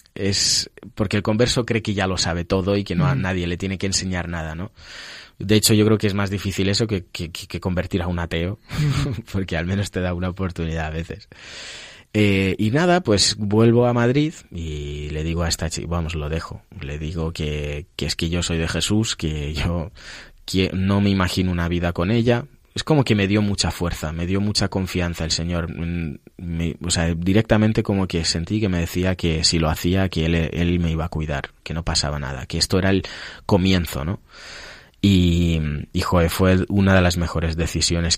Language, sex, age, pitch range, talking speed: Spanish, male, 20-39, 85-100 Hz, 210 wpm